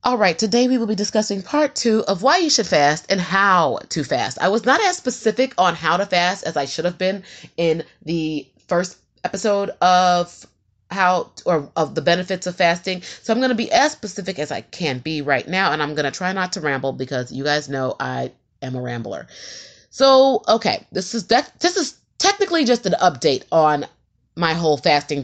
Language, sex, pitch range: English, female, 150-210 Hz